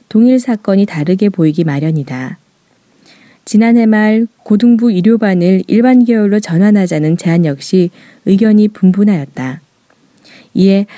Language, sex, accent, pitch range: Korean, female, native, 180-235 Hz